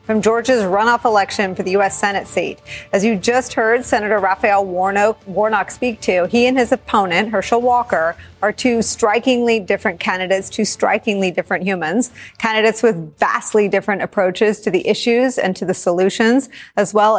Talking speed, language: 165 wpm, English